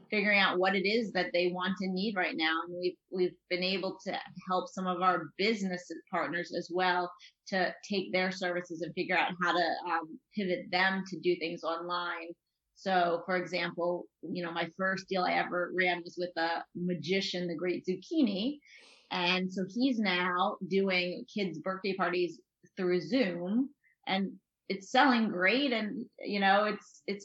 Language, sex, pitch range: English, female, 170-190 Hz